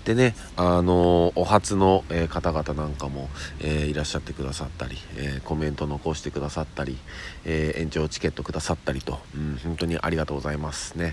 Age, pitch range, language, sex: 40-59, 75-90 Hz, Japanese, male